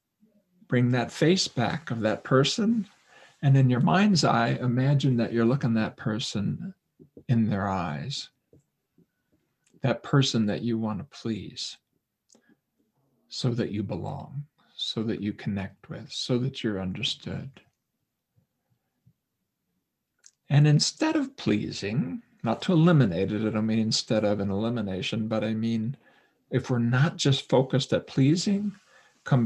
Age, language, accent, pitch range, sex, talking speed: 50-69, English, American, 110-140 Hz, male, 135 wpm